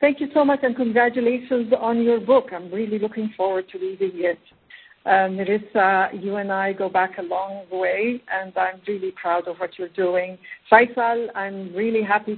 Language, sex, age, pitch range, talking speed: English, female, 50-69, 185-240 Hz, 185 wpm